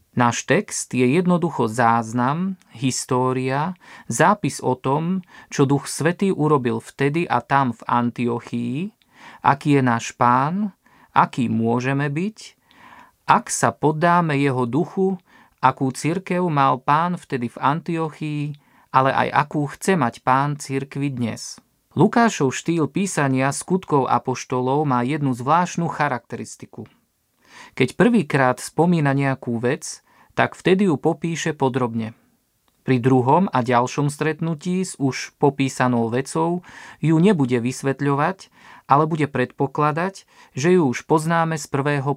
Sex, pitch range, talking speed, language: male, 130-165 Hz, 120 wpm, Slovak